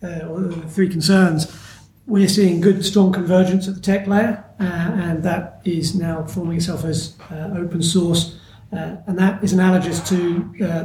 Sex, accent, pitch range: male, British, 170-200 Hz